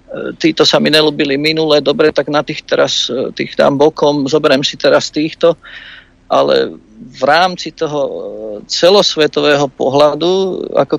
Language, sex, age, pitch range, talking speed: Slovak, male, 50-69, 130-155 Hz, 130 wpm